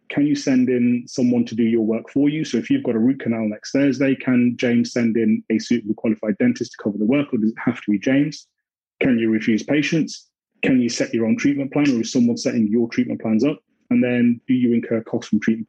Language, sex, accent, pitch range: English, male, British, 110-125 Hz